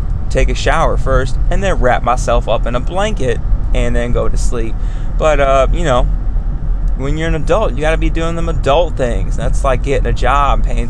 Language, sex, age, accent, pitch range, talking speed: English, male, 20-39, American, 110-155 Hz, 215 wpm